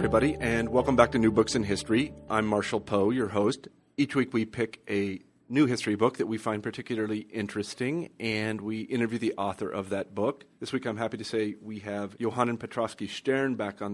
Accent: American